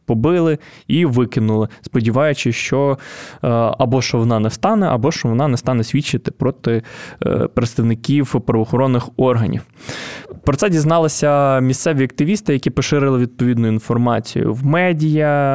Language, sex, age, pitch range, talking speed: Ukrainian, male, 20-39, 120-140 Hz, 120 wpm